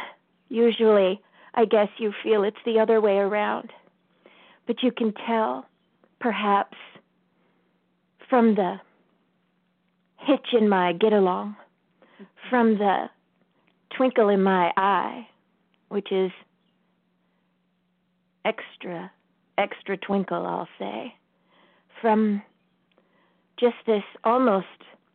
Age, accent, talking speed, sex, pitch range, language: 40-59, American, 90 wpm, female, 190-235 Hz, English